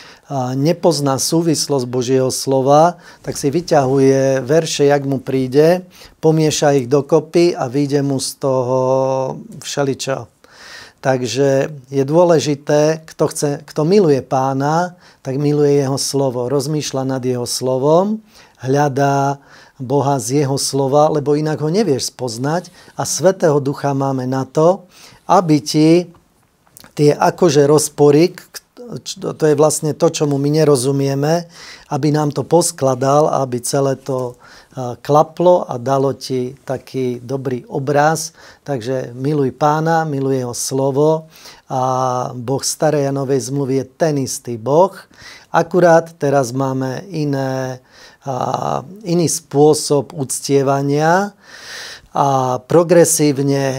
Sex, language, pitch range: male, Slovak, 135-155 Hz